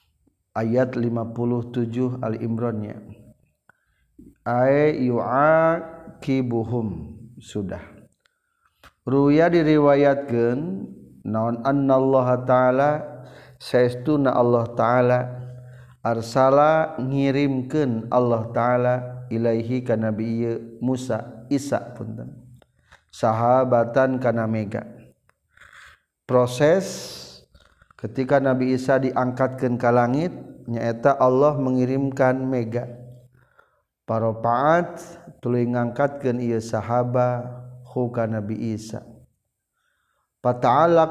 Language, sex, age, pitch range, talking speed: Indonesian, male, 50-69, 120-135 Hz, 65 wpm